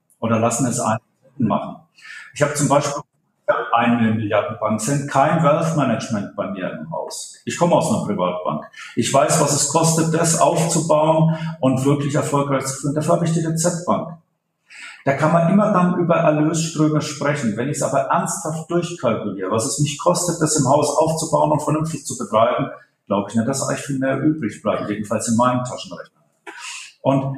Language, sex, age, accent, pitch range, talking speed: German, male, 50-69, German, 140-175 Hz, 180 wpm